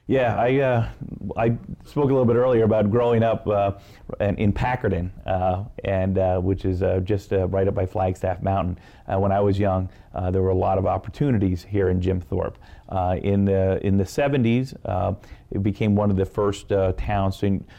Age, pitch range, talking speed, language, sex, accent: 40-59, 95-110 Hz, 210 wpm, English, male, American